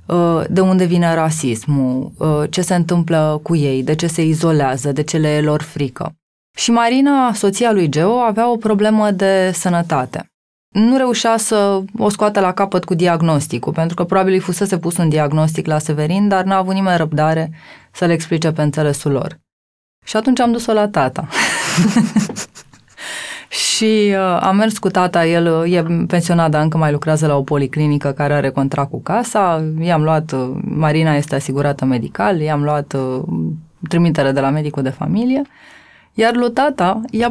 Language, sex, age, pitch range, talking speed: Romanian, female, 20-39, 150-205 Hz, 165 wpm